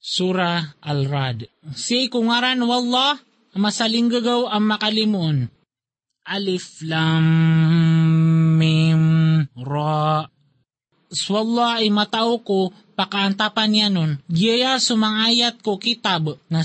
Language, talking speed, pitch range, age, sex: Filipino, 105 wpm, 190-235 Hz, 20-39, male